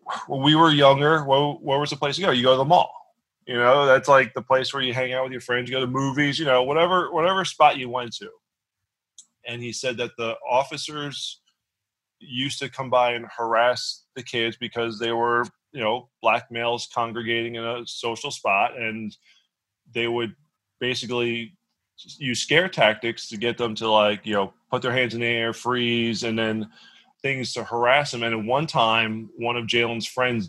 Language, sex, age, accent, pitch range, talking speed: English, male, 20-39, American, 115-135 Hz, 205 wpm